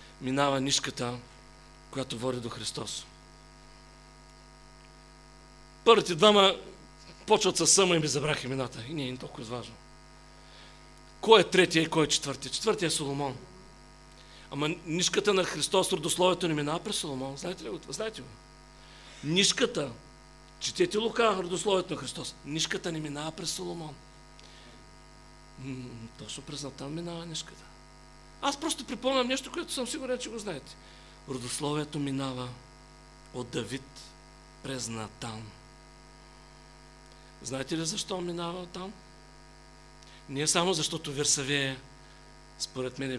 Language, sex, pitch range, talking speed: English, male, 130-180 Hz, 120 wpm